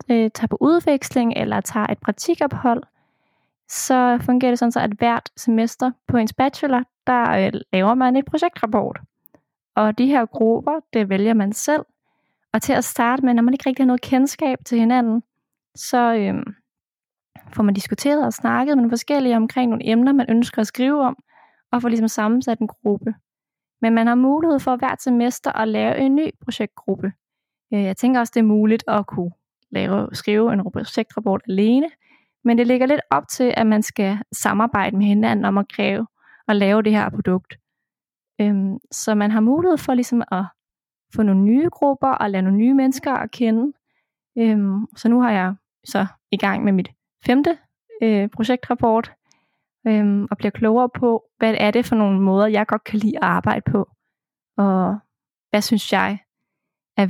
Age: 20-39